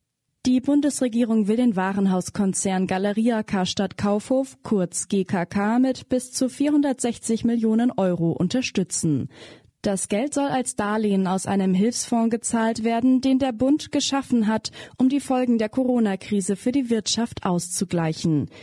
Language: German